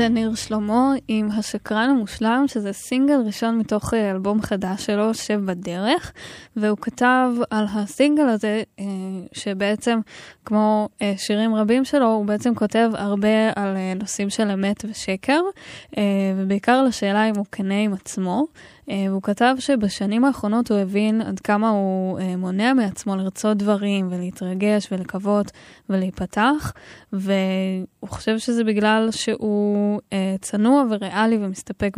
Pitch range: 200-230 Hz